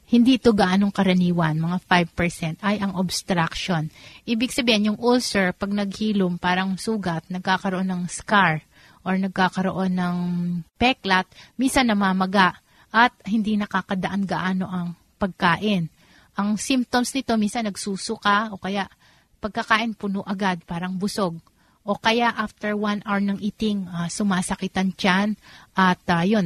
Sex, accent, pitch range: female, native, 180-210 Hz